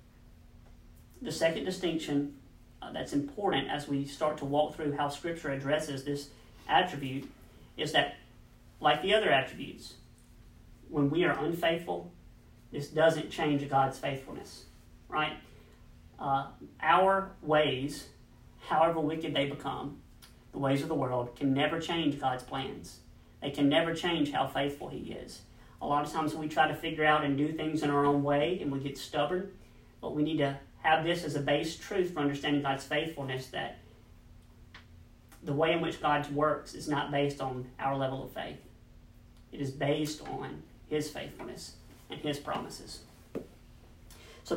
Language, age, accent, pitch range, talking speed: English, 40-59, American, 125-155 Hz, 155 wpm